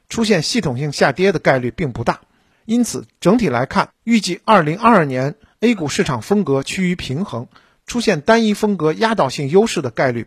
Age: 50-69